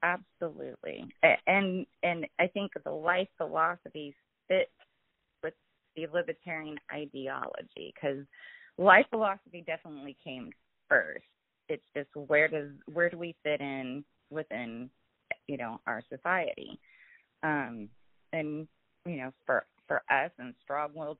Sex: female